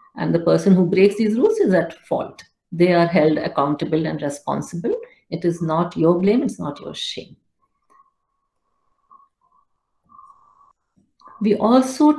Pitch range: 175-235 Hz